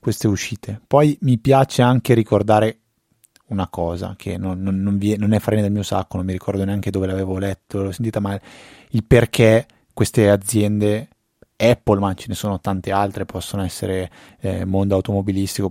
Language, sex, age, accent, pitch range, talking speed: Italian, male, 20-39, native, 100-120 Hz, 175 wpm